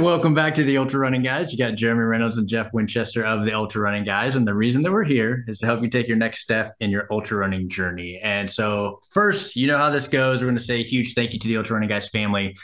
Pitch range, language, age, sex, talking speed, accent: 105-135 Hz, English, 20-39, male, 285 wpm, American